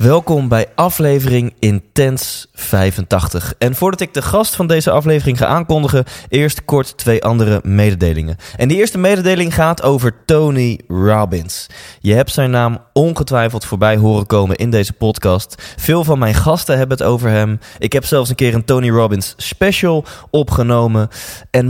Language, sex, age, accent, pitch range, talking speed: Dutch, male, 20-39, Dutch, 105-140 Hz, 160 wpm